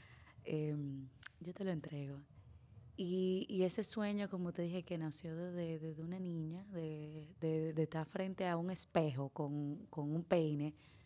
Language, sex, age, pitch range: Spanish, female, 20-39, 145-175 Hz